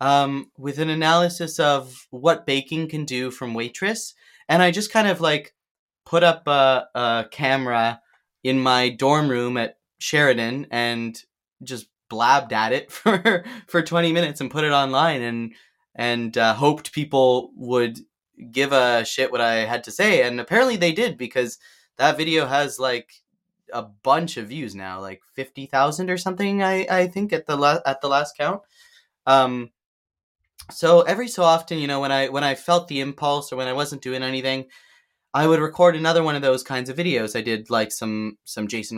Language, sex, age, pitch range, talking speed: English, male, 20-39, 125-170 Hz, 185 wpm